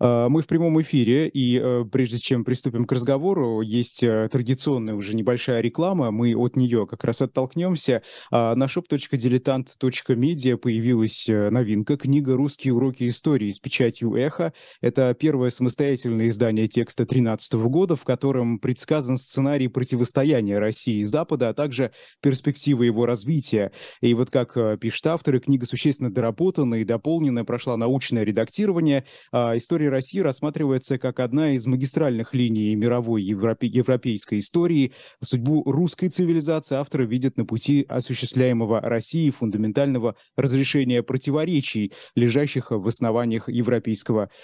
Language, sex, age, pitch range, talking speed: Russian, male, 20-39, 115-140 Hz, 125 wpm